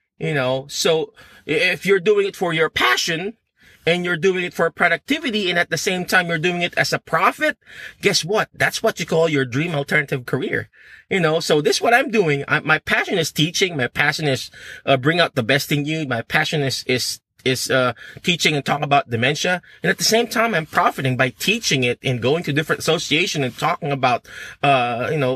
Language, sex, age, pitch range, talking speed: English, male, 30-49, 135-185 Hz, 220 wpm